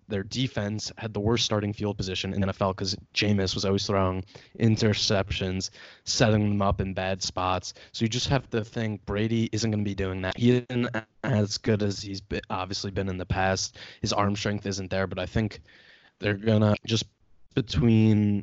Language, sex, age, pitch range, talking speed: English, male, 20-39, 95-110 Hz, 200 wpm